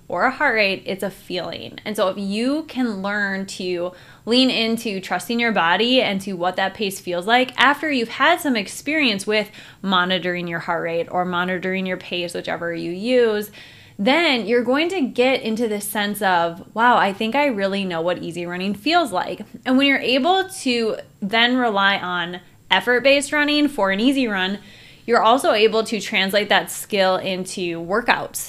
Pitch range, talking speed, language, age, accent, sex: 185-245 Hz, 180 wpm, English, 20-39, American, female